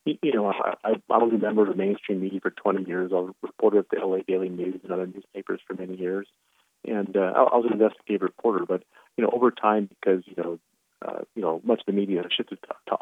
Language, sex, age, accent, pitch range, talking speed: English, male, 40-59, American, 90-105 Hz, 250 wpm